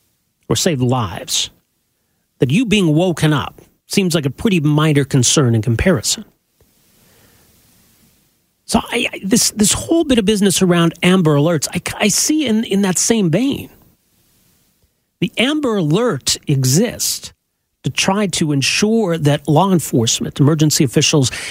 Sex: male